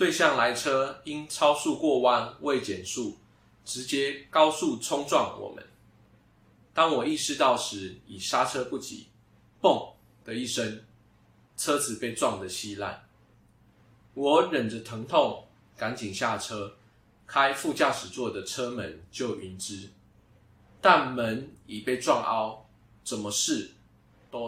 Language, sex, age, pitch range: Chinese, male, 20-39, 110-130 Hz